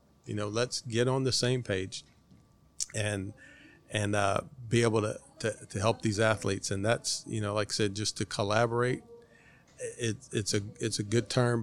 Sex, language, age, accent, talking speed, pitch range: male, English, 40-59, American, 175 wpm, 105-120 Hz